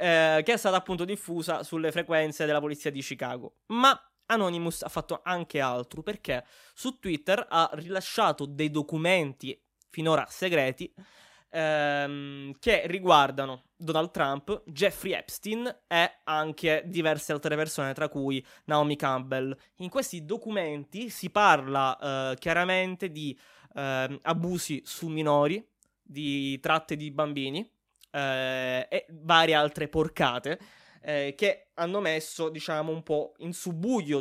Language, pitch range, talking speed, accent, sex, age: Italian, 140-175 Hz, 125 wpm, native, male, 20-39